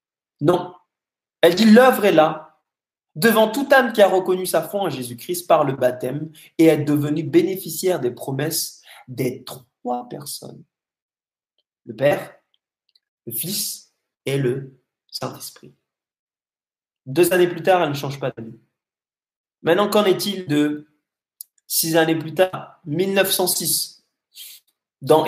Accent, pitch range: French, 145-190 Hz